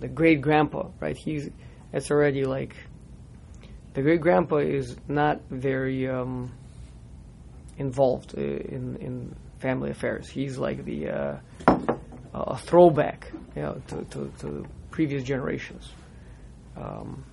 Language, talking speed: English, 120 wpm